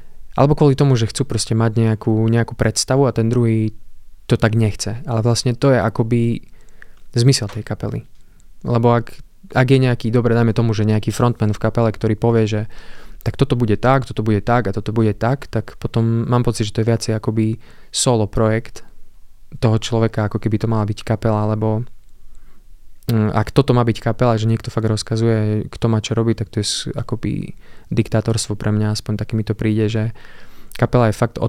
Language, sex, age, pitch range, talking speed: Slovak, male, 20-39, 110-120 Hz, 190 wpm